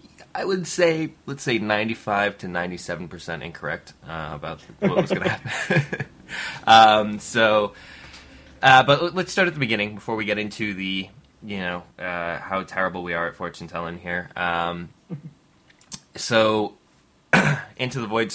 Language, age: English, 20-39